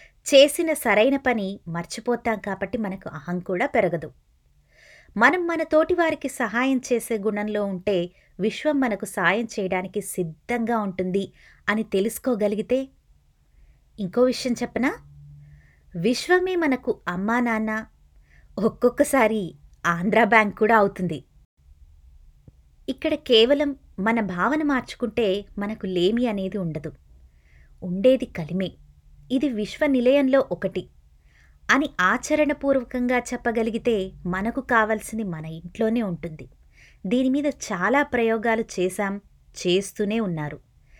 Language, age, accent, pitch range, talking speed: Telugu, 20-39, native, 170-240 Hz, 90 wpm